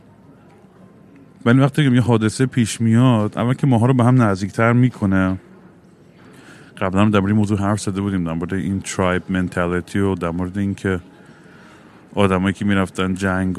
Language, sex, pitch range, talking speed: Persian, male, 90-105 Hz, 145 wpm